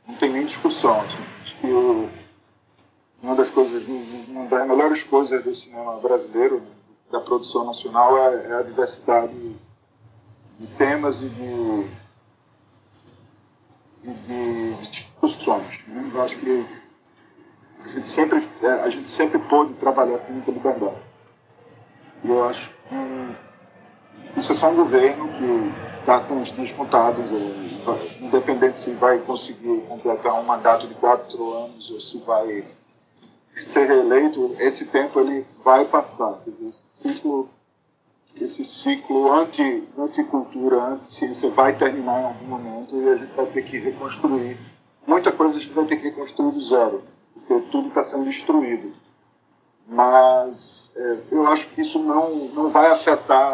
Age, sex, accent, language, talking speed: 40-59, male, Brazilian, Portuguese, 130 wpm